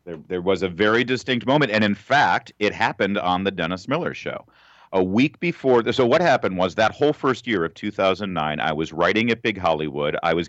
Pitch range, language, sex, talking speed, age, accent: 90-105 Hz, English, male, 225 wpm, 40-59, American